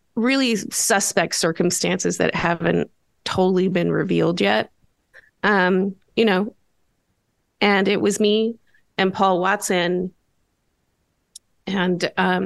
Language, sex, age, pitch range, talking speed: English, female, 30-49, 170-210 Hz, 95 wpm